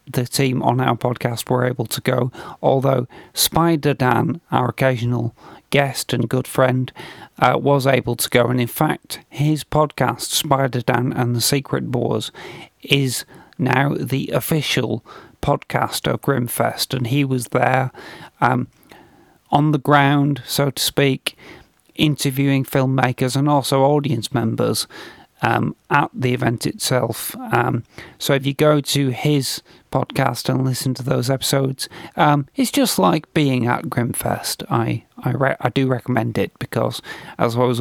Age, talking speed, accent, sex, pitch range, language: 40-59, 150 wpm, British, male, 125-140 Hz, English